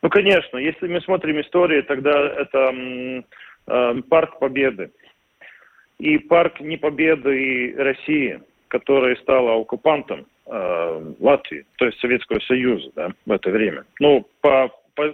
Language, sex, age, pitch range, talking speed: Russian, male, 40-59, 125-165 Hz, 125 wpm